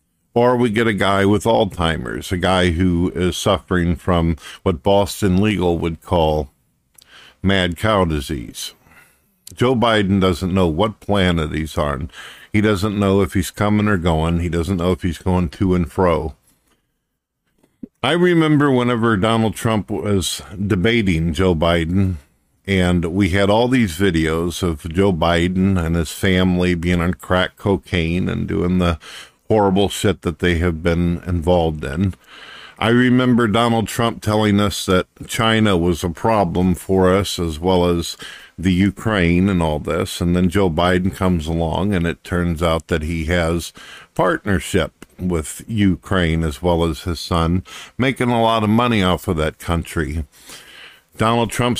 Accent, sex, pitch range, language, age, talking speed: American, male, 85-105 Hz, English, 50-69, 155 wpm